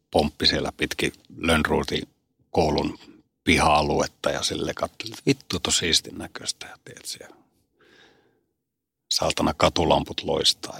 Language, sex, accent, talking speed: Finnish, male, native, 95 wpm